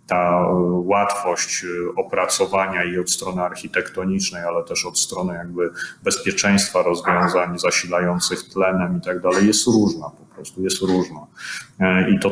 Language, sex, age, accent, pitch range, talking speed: Polish, male, 30-49, native, 95-100 Hz, 130 wpm